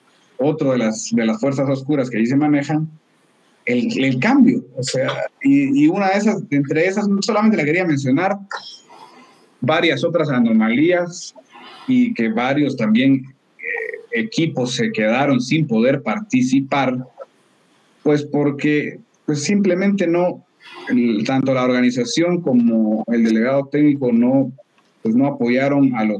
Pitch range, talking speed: 130-200 Hz, 135 wpm